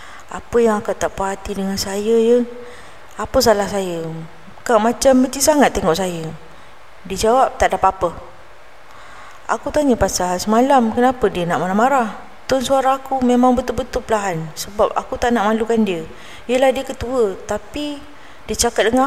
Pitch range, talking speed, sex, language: 190-240 Hz, 155 wpm, female, Malay